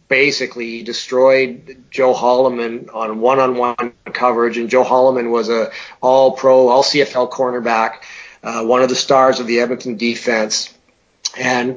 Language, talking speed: English, 135 wpm